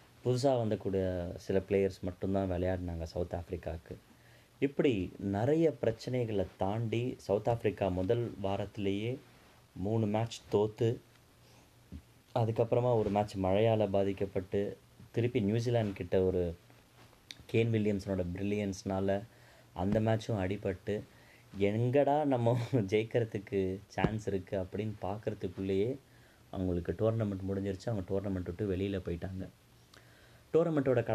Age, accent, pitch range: 30-49, native, 95-115 Hz